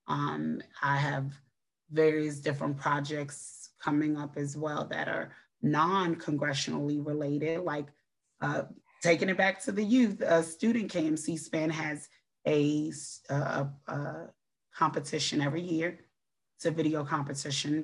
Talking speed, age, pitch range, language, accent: 120 wpm, 30-49, 140-155 Hz, English, American